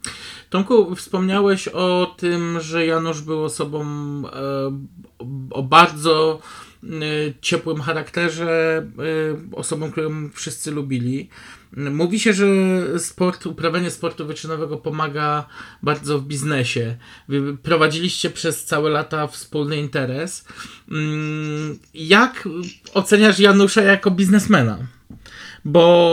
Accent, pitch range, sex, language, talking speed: native, 155-205 Hz, male, Polish, 85 wpm